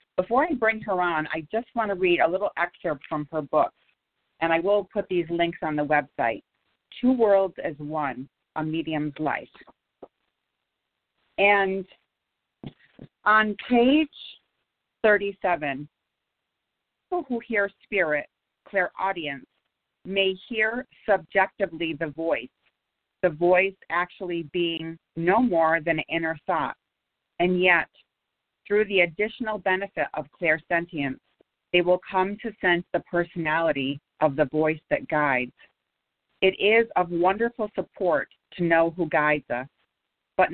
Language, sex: English, female